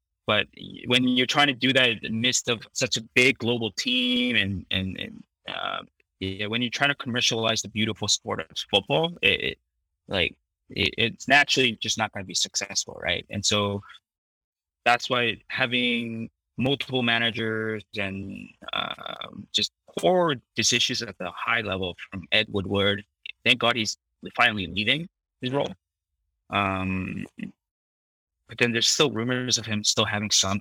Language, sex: English, male